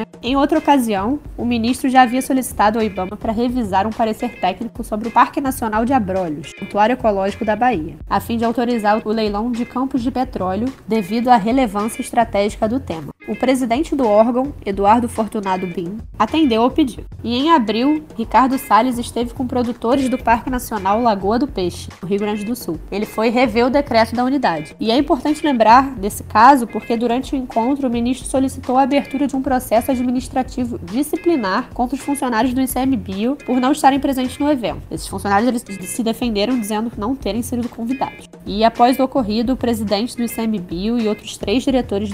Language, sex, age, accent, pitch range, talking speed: Portuguese, female, 10-29, Brazilian, 215-260 Hz, 185 wpm